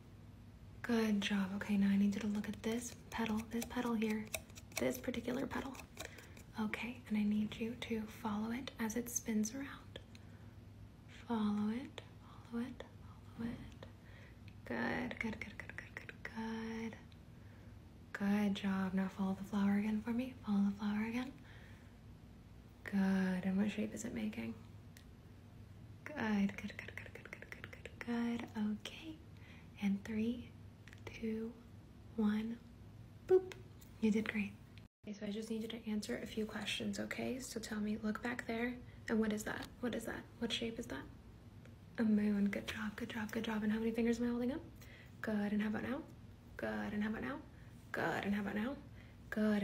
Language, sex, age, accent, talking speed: English, female, 20-39, American, 170 wpm